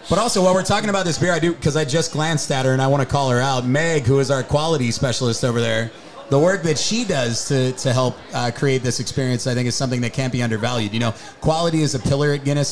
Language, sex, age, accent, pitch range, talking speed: English, male, 30-49, American, 125-150 Hz, 280 wpm